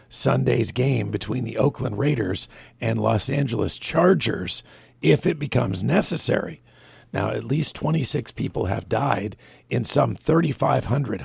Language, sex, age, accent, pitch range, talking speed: English, male, 50-69, American, 105-140 Hz, 130 wpm